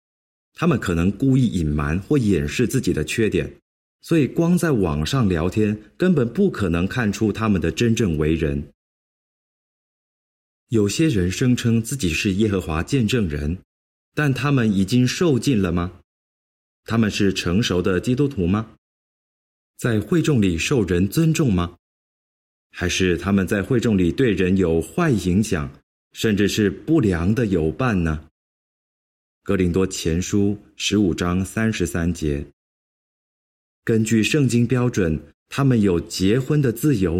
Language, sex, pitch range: Chinese, male, 85-125 Hz